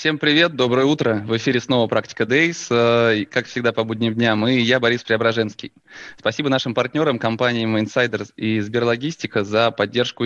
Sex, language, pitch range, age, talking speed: male, Russian, 110-130 Hz, 20-39, 160 wpm